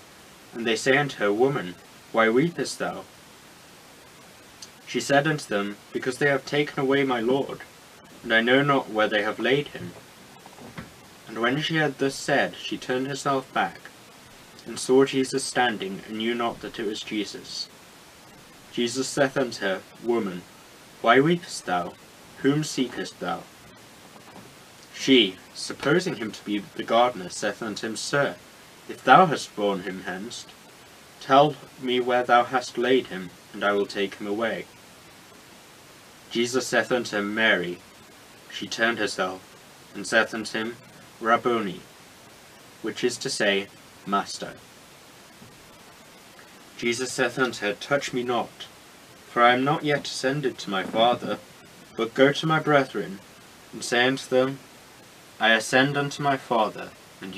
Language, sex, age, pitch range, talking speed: English, male, 20-39, 110-140 Hz, 145 wpm